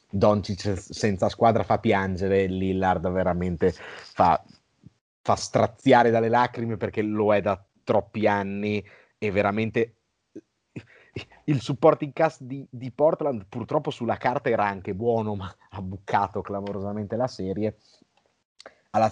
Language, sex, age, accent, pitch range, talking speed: Italian, male, 30-49, native, 100-120 Hz, 120 wpm